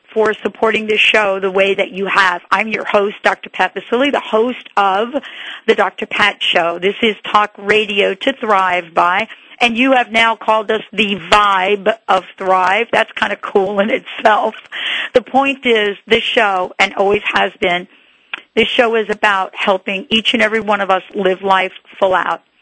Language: English